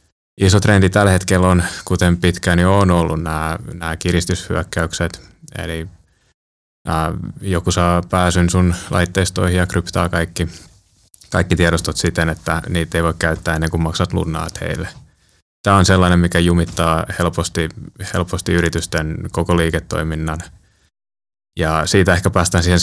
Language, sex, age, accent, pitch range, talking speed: Finnish, male, 20-39, native, 80-90 Hz, 130 wpm